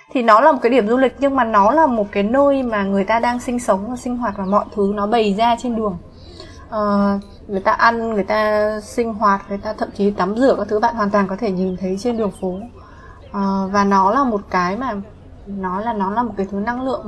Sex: female